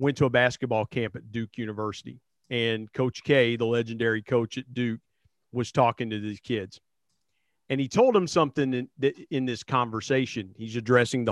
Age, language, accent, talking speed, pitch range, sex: 40-59, English, American, 175 wpm, 120-150 Hz, male